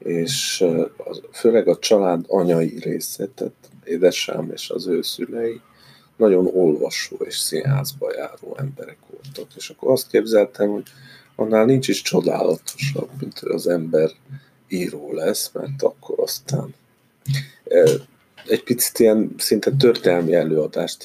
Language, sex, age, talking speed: English, male, 50-69, 115 wpm